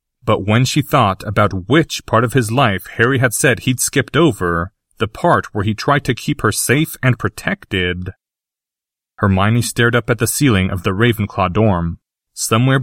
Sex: male